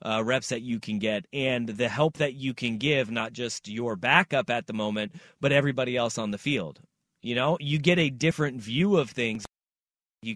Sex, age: male, 30-49